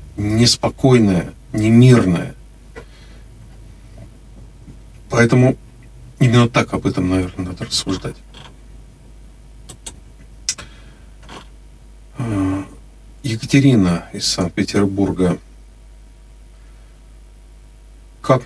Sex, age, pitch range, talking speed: male, 50-69, 95-120 Hz, 50 wpm